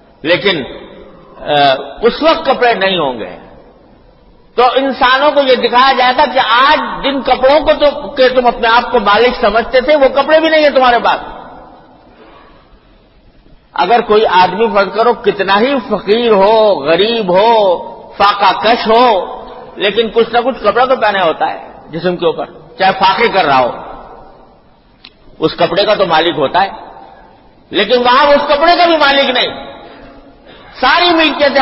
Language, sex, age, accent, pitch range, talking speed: English, male, 50-69, Indian, 225-275 Hz, 145 wpm